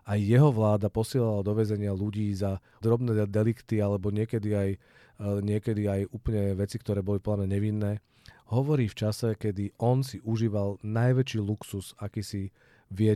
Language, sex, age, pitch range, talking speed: Czech, male, 40-59, 105-120 Hz, 145 wpm